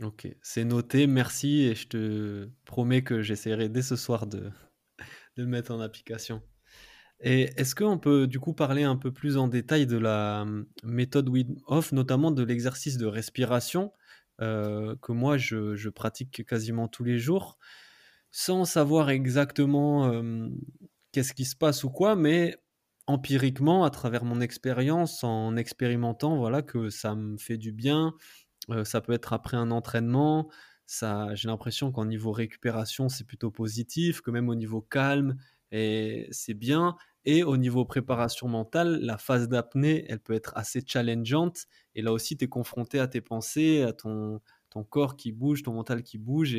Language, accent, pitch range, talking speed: French, French, 110-140 Hz, 170 wpm